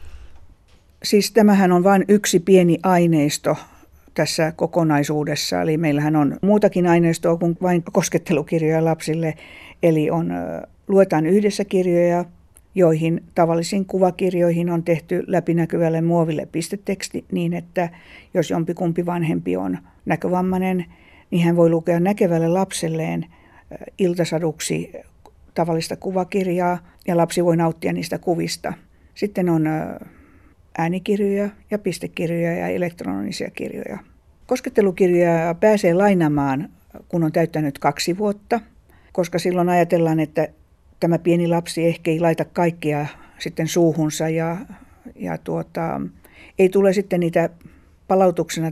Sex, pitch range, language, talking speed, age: female, 160-180 Hz, Finnish, 110 wpm, 50-69